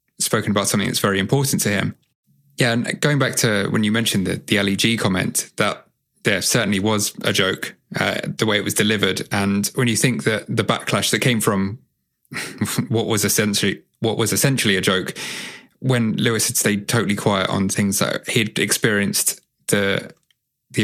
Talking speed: 180 wpm